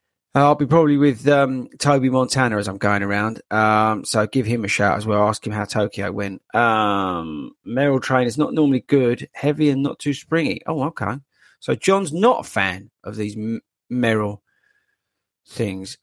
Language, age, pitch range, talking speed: English, 40-59, 110-155 Hz, 175 wpm